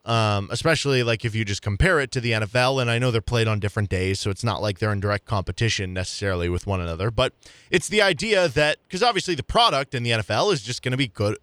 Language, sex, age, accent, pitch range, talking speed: English, male, 20-39, American, 110-140 Hz, 255 wpm